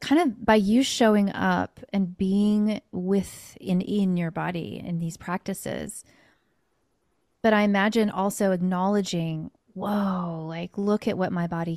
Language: English